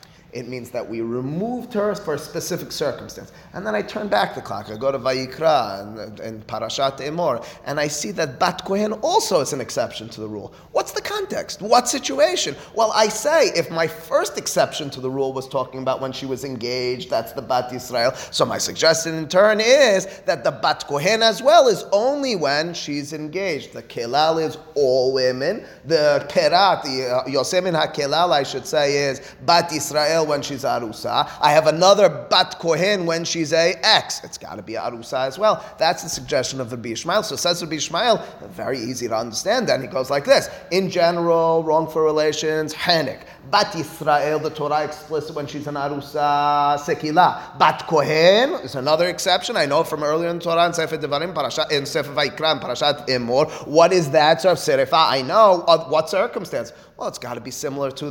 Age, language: 30-49, English